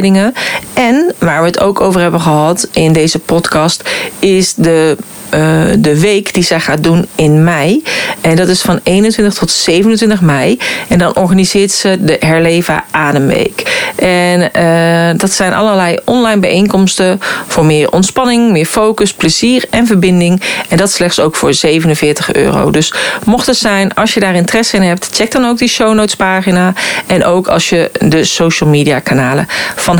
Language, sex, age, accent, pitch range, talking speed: Dutch, female, 40-59, Dutch, 165-215 Hz, 170 wpm